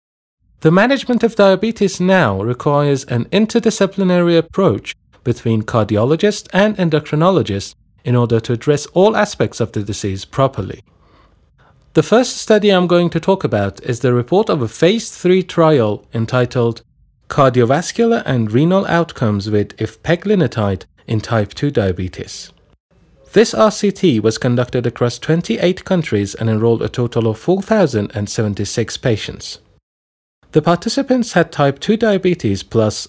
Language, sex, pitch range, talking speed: Persian, male, 110-180 Hz, 130 wpm